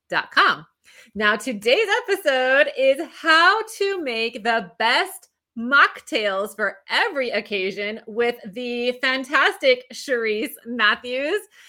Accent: American